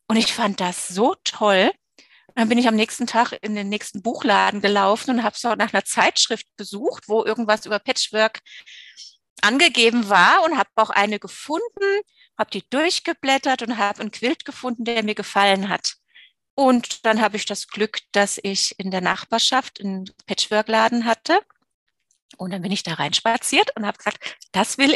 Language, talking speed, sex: German, 175 wpm, female